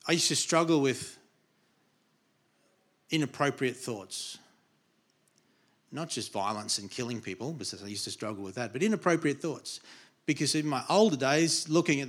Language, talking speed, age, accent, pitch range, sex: English, 150 wpm, 40-59, Australian, 125-165 Hz, male